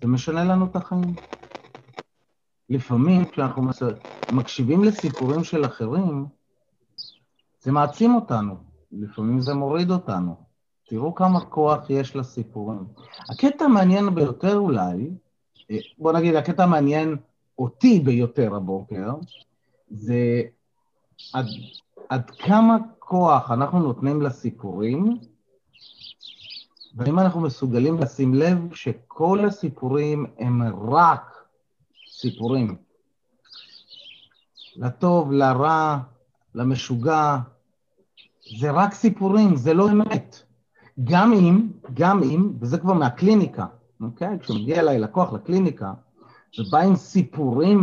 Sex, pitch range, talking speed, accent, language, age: male, 120-180 Hz, 95 wpm, native, Hebrew, 30-49